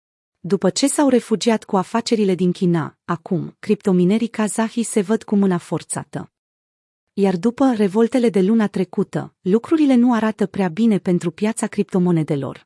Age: 30-49